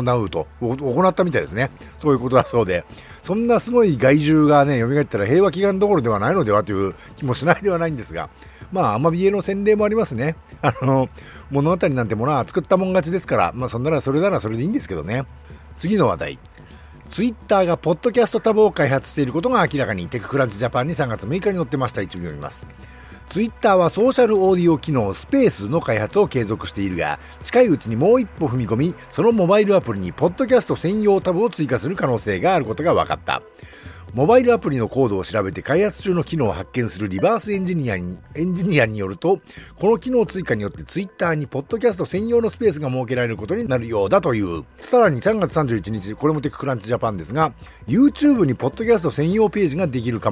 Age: 60-79